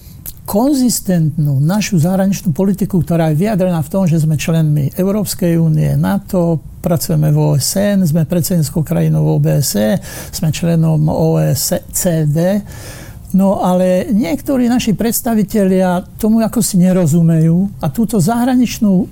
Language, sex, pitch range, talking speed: Slovak, male, 165-200 Hz, 115 wpm